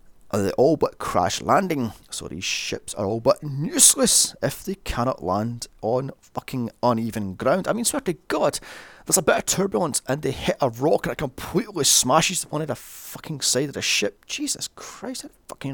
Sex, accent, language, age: male, British, English, 30-49